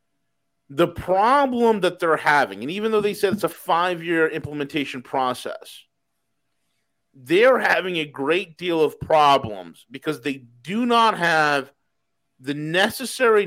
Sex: male